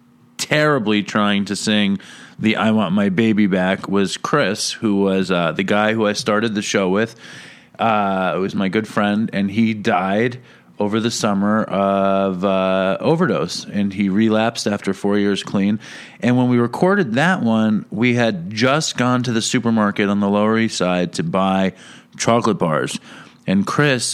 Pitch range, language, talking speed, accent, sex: 95-120 Hz, English, 170 wpm, American, male